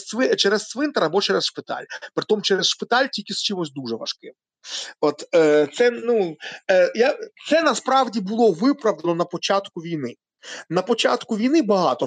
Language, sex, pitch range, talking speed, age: Ukrainian, male, 165-235 Hz, 140 wpm, 30-49